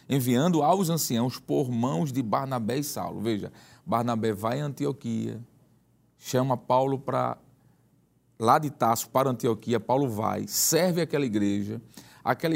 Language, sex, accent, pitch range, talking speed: Portuguese, male, Brazilian, 115-150 Hz, 140 wpm